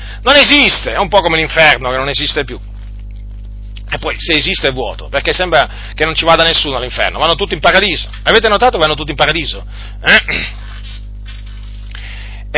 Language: Italian